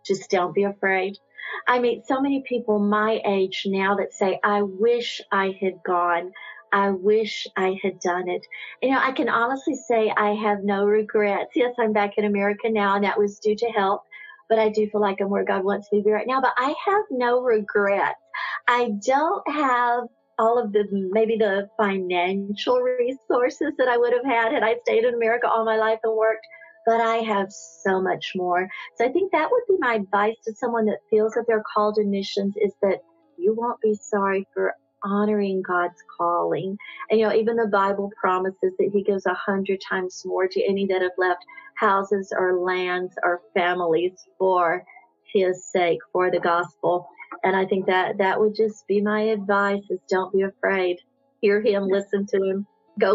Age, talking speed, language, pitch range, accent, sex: 50-69, 195 wpm, Romanian, 195-230 Hz, American, female